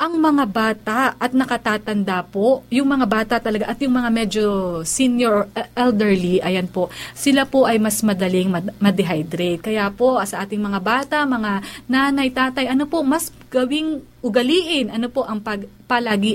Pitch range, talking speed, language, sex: 205-275 Hz, 160 wpm, Filipino, female